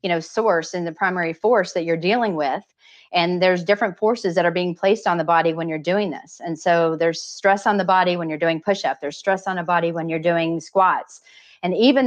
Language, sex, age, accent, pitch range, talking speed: English, female, 30-49, American, 165-195 Hz, 240 wpm